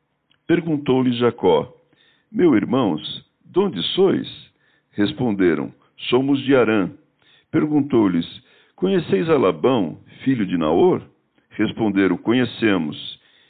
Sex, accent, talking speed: male, Brazilian, 85 wpm